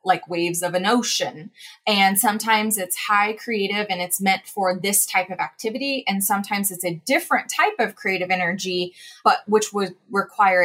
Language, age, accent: English, 20-39, American